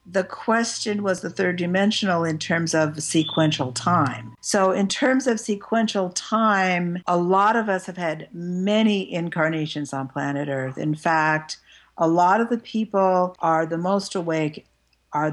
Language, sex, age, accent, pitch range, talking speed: English, female, 60-79, American, 150-180 Hz, 155 wpm